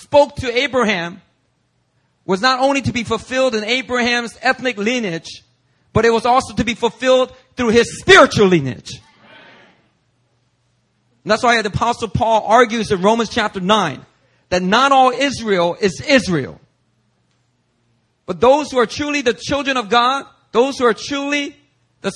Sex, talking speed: male, 150 wpm